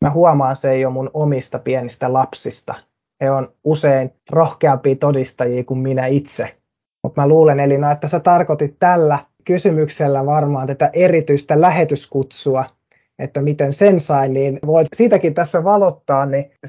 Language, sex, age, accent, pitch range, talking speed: Finnish, male, 20-39, native, 130-155 Hz, 145 wpm